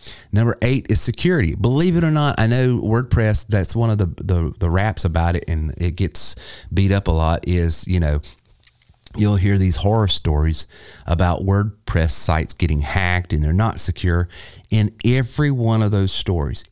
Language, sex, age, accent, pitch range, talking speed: English, male, 30-49, American, 85-105 Hz, 180 wpm